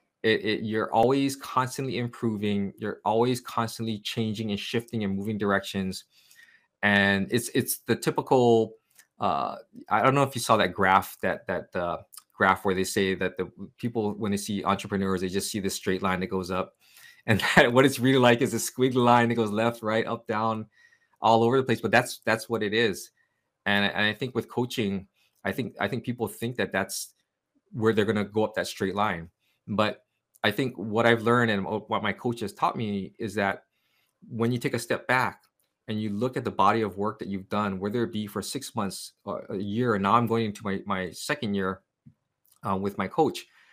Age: 20-39